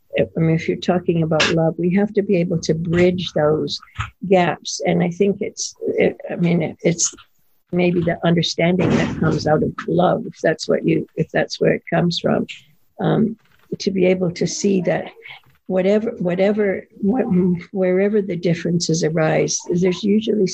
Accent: American